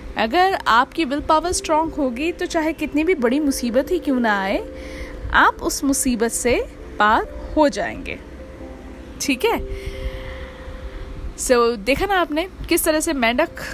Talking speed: 150 wpm